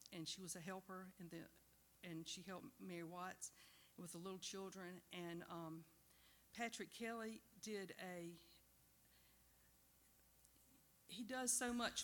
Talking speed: 130 wpm